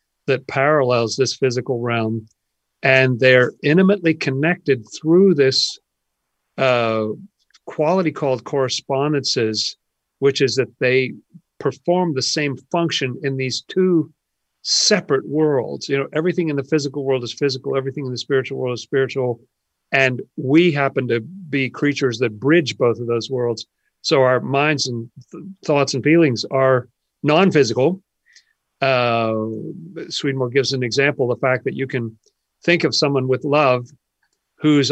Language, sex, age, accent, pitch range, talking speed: English, male, 50-69, American, 125-145 Hz, 140 wpm